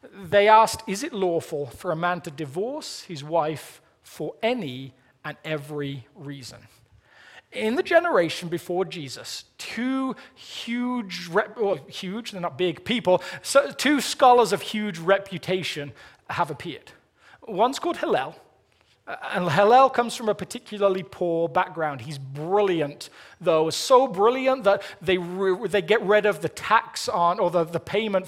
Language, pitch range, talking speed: English, 170-225 Hz, 140 wpm